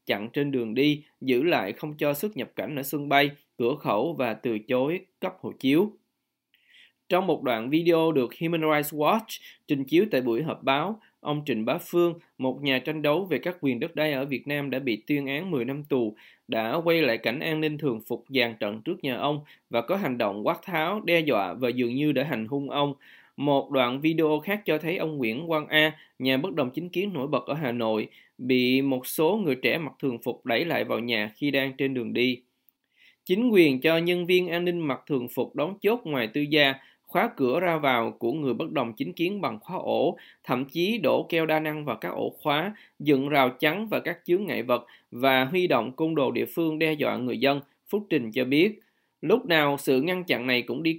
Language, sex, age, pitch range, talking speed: Vietnamese, male, 20-39, 130-165 Hz, 225 wpm